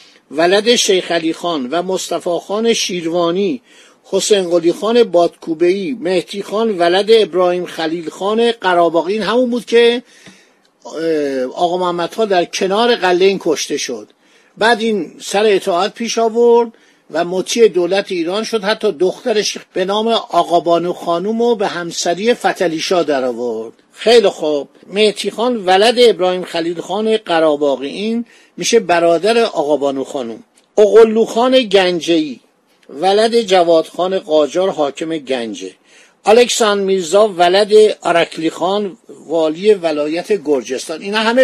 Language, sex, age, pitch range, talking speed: Persian, male, 50-69, 170-225 Hz, 115 wpm